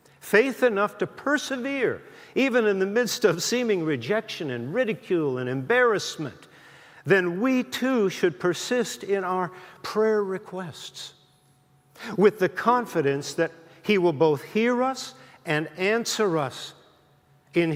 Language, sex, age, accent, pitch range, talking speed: English, male, 50-69, American, 155-215 Hz, 125 wpm